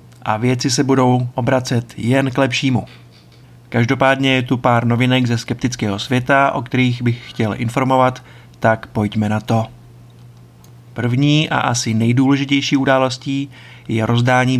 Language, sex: Czech, male